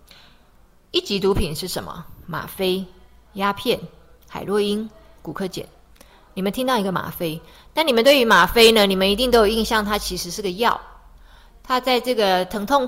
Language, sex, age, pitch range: Chinese, female, 20-39, 180-220 Hz